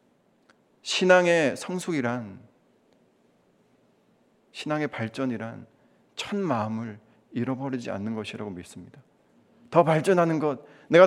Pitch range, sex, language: 120-160 Hz, male, Korean